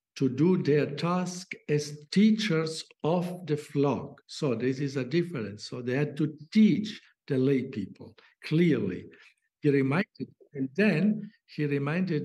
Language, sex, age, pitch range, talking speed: English, male, 60-79, 135-170 Hz, 145 wpm